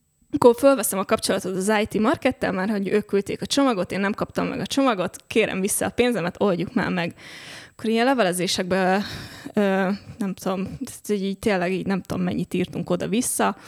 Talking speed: 165 wpm